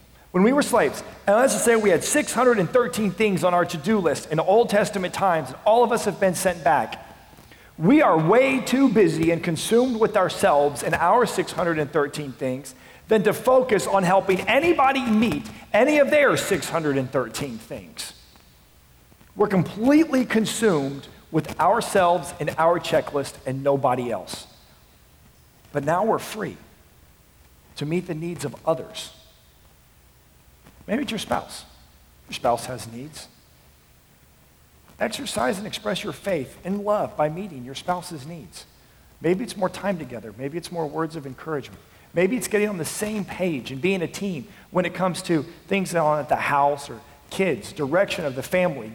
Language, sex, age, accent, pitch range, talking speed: English, male, 40-59, American, 135-200 Hz, 165 wpm